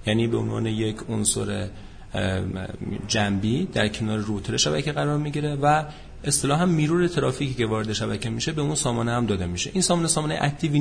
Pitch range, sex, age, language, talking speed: 105-150 Hz, male, 40-59, Persian, 170 wpm